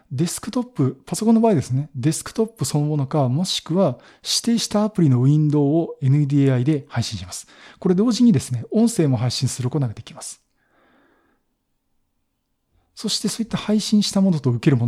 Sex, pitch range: male, 125-165 Hz